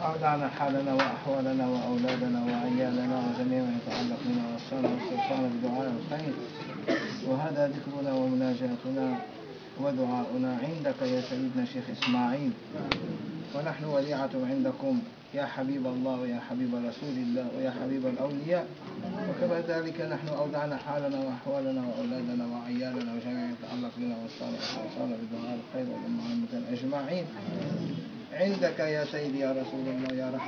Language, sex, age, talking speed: English, male, 20-39, 115 wpm